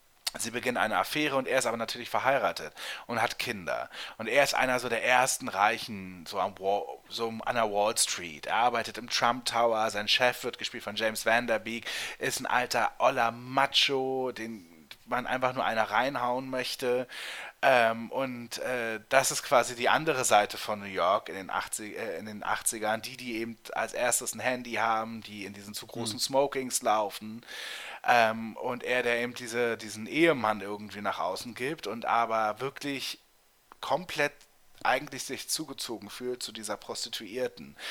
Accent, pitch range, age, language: German, 110-130 Hz, 30-49, German